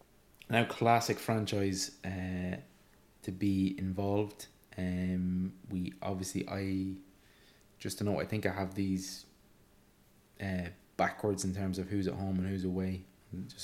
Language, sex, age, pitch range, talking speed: English, male, 20-39, 95-110 Hz, 135 wpm